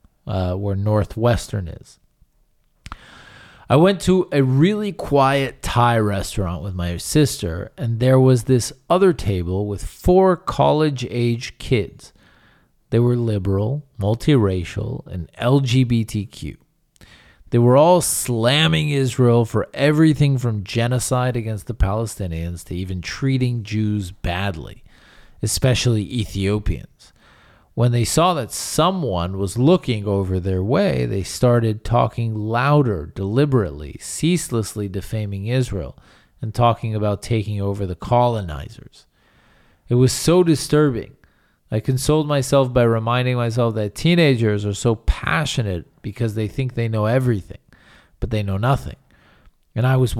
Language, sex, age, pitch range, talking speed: English, male, 40-59, 100-130 Hz, 125 wpm